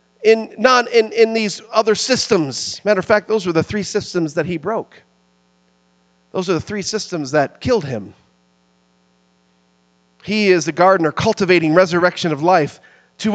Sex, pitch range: male, 125-200 Hz